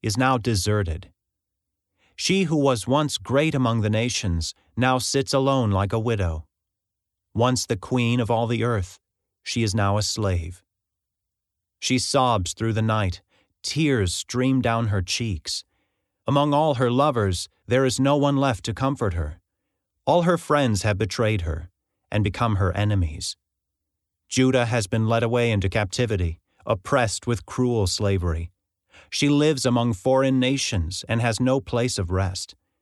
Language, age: English, 40-59